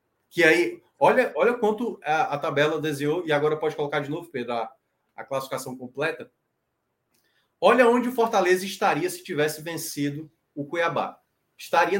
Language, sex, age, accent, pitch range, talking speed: Portuguese, male, 20-39, Brazilian, 145-205 Hz, 155 wpm